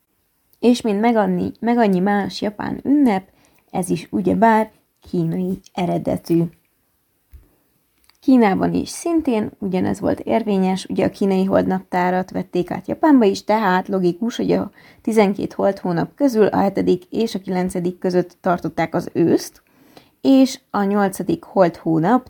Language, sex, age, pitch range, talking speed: Hungarian, female, 20-39, 180-240 Hz, 130 wpm